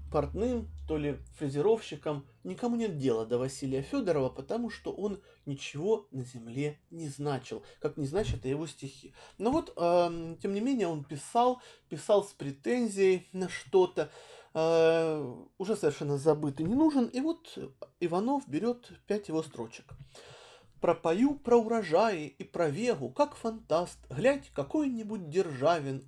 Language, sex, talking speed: Russian, male, 145 wpm